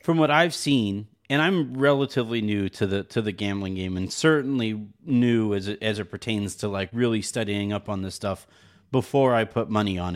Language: English